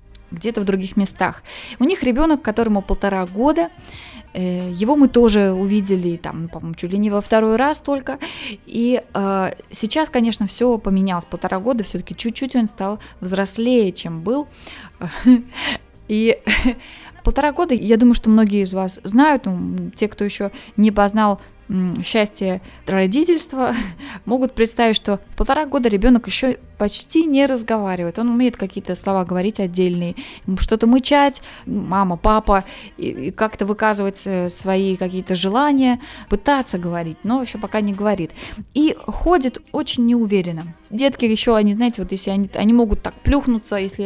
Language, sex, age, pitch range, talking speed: Russian, female, 20-39, 195-270 Hz, 140 wpm